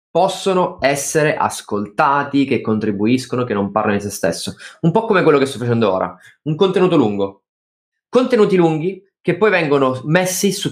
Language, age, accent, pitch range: Italian, 20-39, native, 115-165 Hz